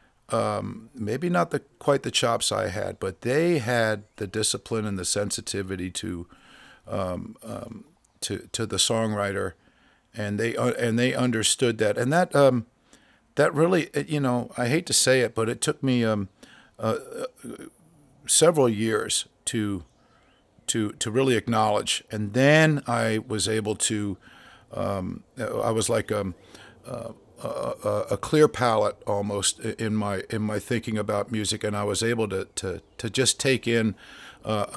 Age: 50-69